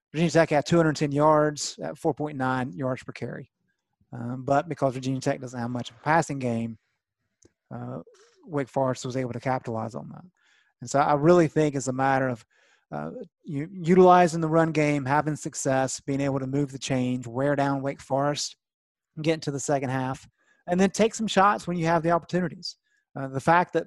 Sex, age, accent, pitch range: male, 30-49, American, 130-165 Hz